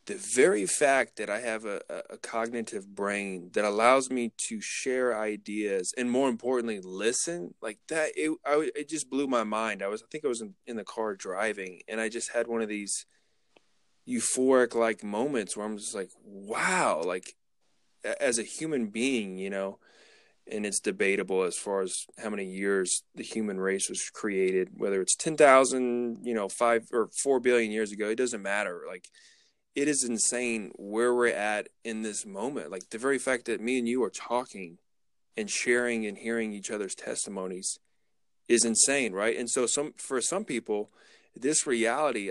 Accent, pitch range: American, 105-125 Hz